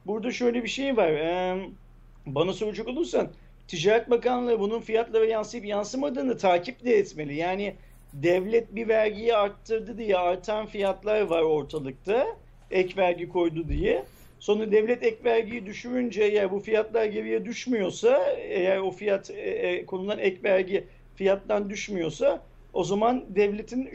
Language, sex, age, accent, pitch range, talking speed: Turkish, male, 40-59, native, 195-250 Hz, 135 wpm